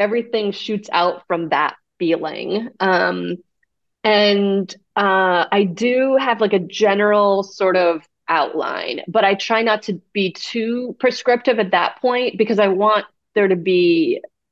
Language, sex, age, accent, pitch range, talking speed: English, female, 30-49, American, 180-225 Hz, 145 wpm